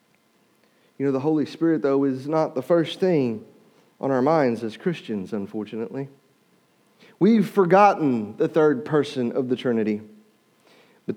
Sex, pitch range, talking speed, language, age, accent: male, 145-205 Hz, 140 wpm, English, 40-59, American